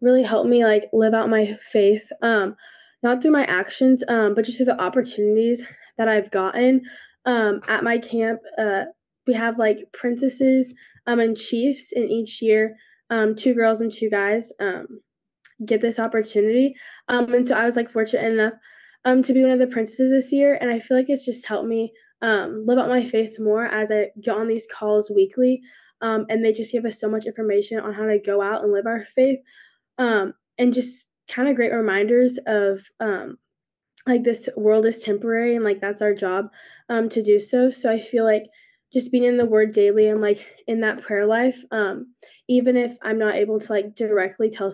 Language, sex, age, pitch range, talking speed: English, female, 10-29, 215-245 Hz, 205 wpm